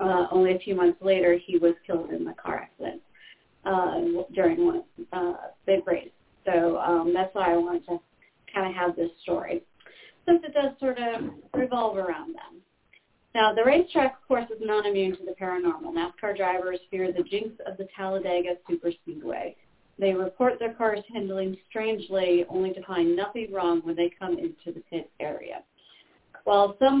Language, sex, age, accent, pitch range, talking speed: English, female, 40-59, American, 180-230 Hz, 180 wpm